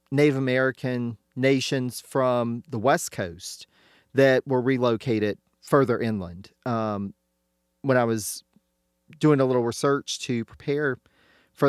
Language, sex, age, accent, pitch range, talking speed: English, male, 40-59, American, 110-145 Hz, 120 wpm